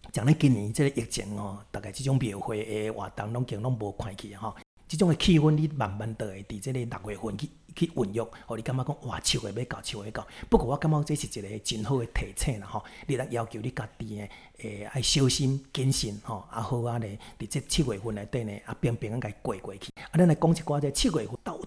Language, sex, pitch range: Chinese, male, 110-140 Hz